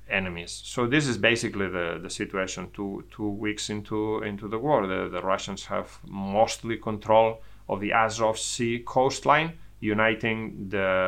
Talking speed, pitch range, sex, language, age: 150 wpm, 100-120 Hz, male, English, 30-49